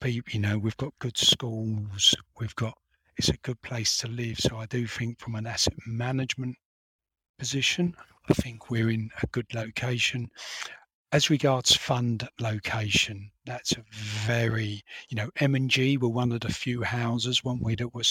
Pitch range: 115-130 Hz